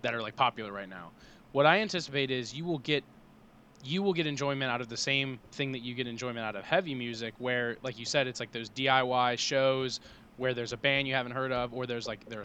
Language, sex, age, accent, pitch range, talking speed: English, male, 20-39, American, 115-135 Hz, 245 wpm